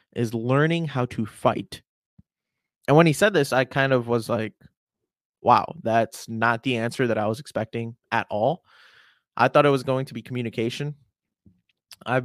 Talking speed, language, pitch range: 170 wpm, English, 110-130 Hz